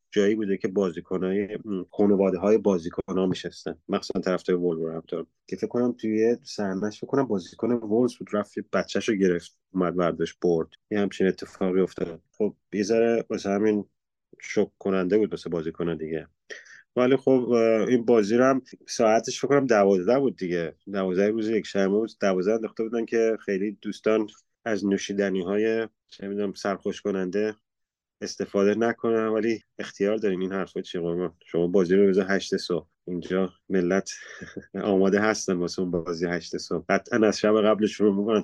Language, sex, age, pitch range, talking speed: Persian, male, 30-49, 95-115 Hz, 150 wpm